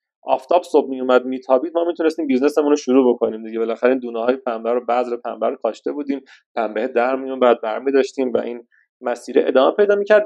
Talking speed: 200 wpm